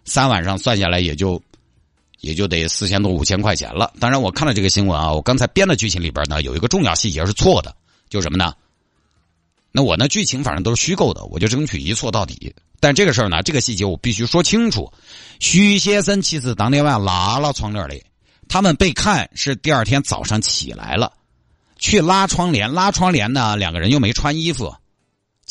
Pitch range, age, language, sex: 95-145 Hz, 50-69, Chinese, male